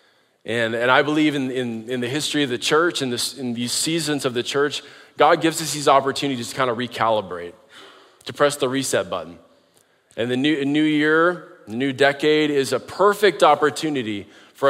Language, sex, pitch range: English, male, 125-155 Hz